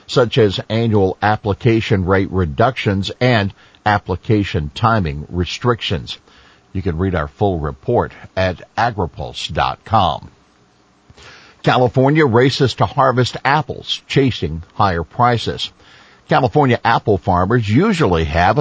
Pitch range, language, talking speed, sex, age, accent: 90-115 Hz, English, 100 wpm, male, 50-69, American